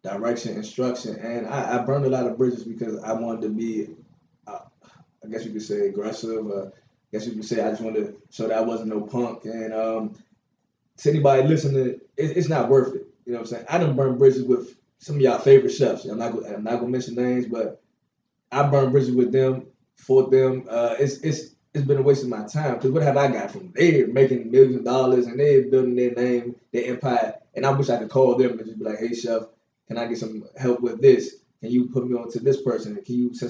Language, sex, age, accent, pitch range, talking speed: English, male, 20-39, American, 120-140 Hz, 245 wpm